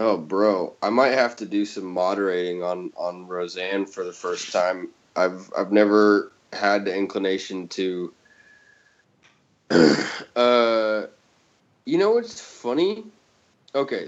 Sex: male